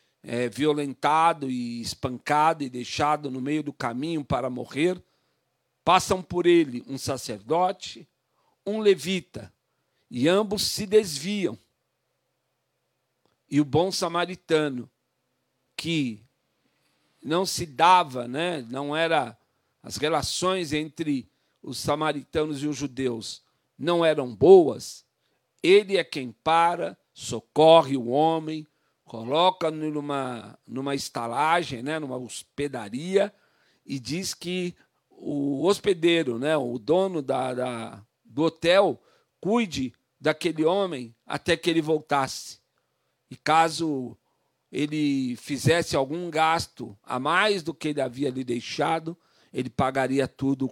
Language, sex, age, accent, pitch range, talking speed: Portuguese, male, 50-69, Brazilian, 130-170 Hz, 110 wpm